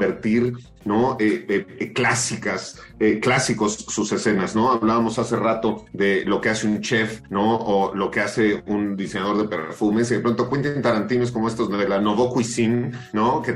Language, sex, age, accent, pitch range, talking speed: Spanish, male, 40-59, Mexican, 105-120 Hz, 175 wpm